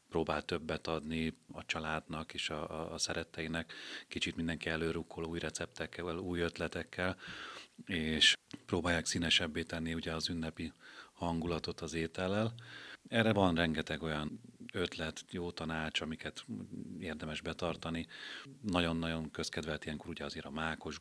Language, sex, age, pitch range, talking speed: Hungarian, male, 30-49, 80-85 Hz, 125 wpm